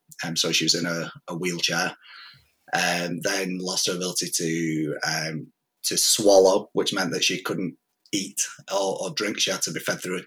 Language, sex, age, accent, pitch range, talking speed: English, male, 30-49, British, 85-110 Hz, 200 wpm